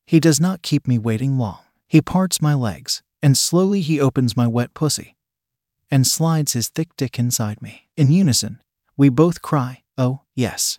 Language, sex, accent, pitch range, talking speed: English, male, American, 125-155 Hz, 180 wpm